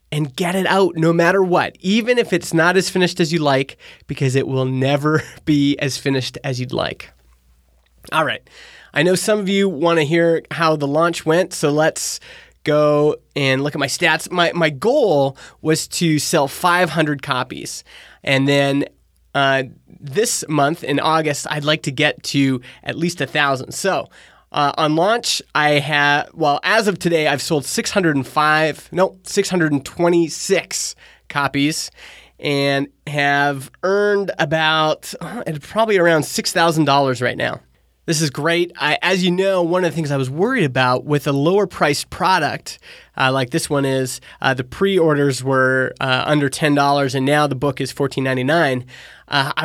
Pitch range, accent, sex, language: 140-170 Hz, American, male, English